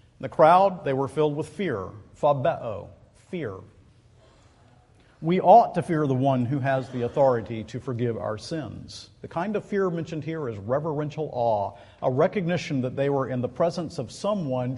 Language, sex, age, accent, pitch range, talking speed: English, male, 50-69, American, 120-170 Hz, 170 wpm